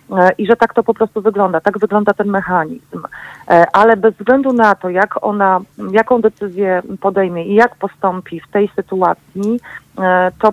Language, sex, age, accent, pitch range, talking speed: Polish, female, 40-59, native, 185-220 Hz, 150 wpm